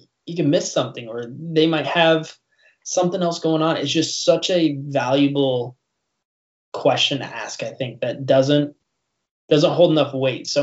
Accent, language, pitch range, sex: American, English, 130-155 Hz, male